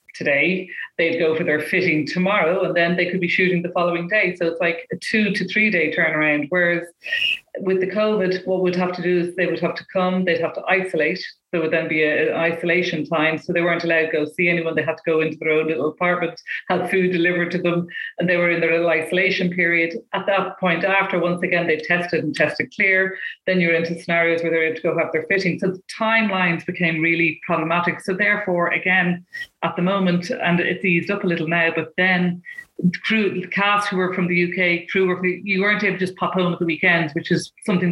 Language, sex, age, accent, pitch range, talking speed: English, female, 30-49, Irish, 165-185 Hz, 230 wpm